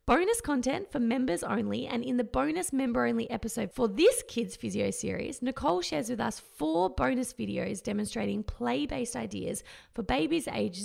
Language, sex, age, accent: English, female, 20-39, Australian